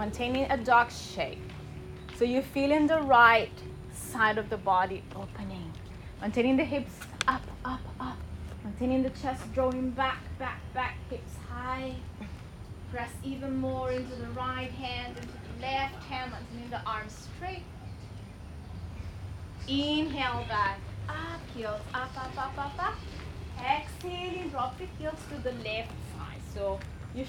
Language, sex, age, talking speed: English, female, 20-39, 135 wpm